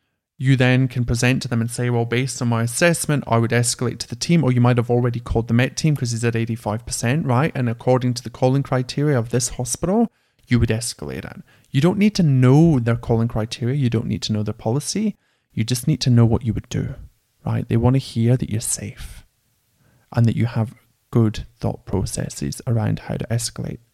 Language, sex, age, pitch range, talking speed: English, male, 30-49, 115-140 Hz, 225 wpm